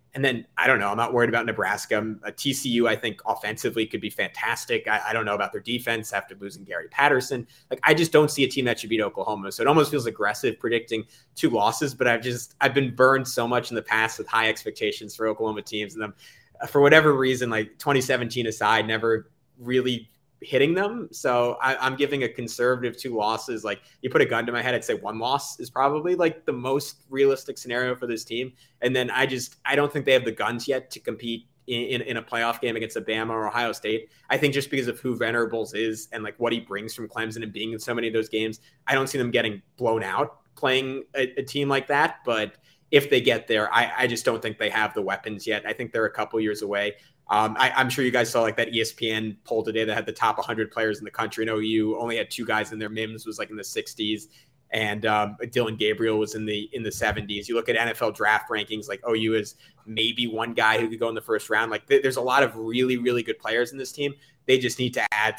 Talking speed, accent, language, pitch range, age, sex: 250 wpm, American, English, 110-130 Hz, 20-39, male